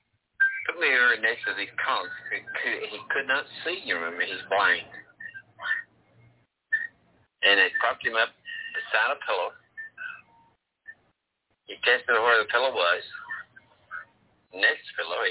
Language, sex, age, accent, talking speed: English, male, 60-79, American, 115 wpm